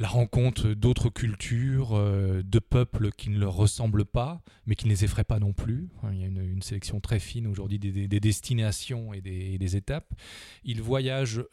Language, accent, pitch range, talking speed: French, French, 105-125 Hz, 210 wpm